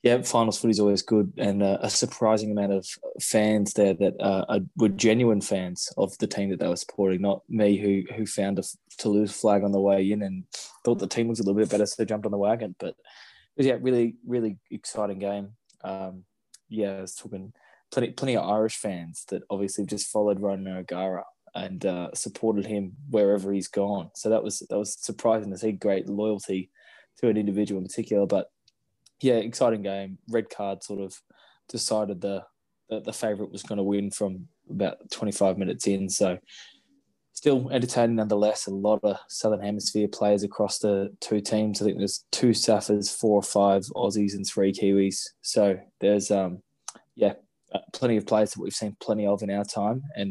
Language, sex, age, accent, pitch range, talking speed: English, male, 20-39, Australian, 100-110 Hz, 195 wpm